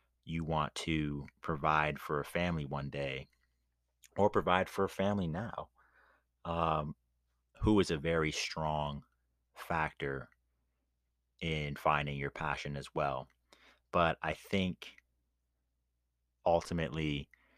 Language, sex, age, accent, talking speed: English, male, 30-49, American, 110 wpm